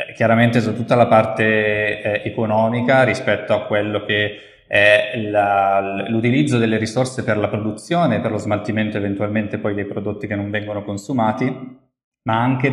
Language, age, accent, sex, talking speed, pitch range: Italian, 20-39, native, male, 145 wpm, 105-120 Hz